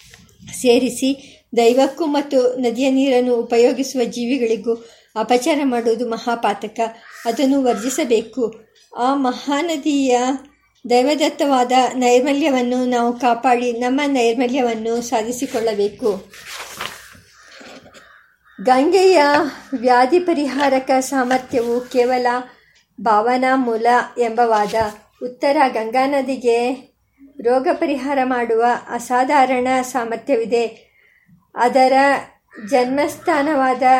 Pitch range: 235-270 Hz